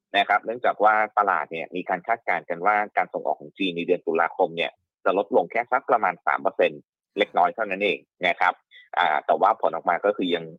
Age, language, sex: 30-49, Thai, male